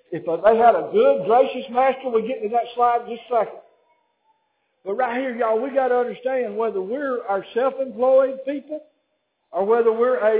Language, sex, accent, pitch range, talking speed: English, male, American, 200-285 Hz, 190 wpm